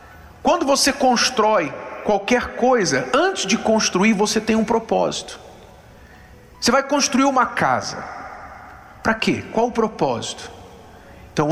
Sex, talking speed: male, 120 wpm